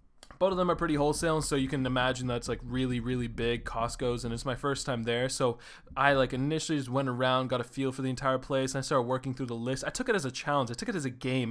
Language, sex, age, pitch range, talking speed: English, male, 20-39, 125-150 Hz, 285 wpm